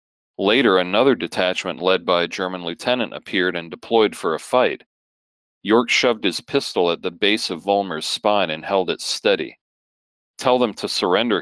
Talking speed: 170 wpm